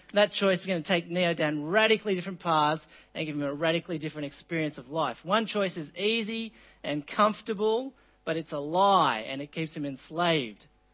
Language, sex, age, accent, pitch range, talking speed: English, male, 40-59, Australian, 150-200 Hz, 190 wpm